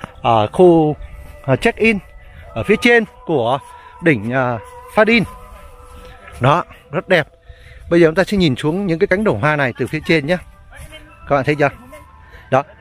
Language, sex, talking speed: Vietnamese, male, 160 wpm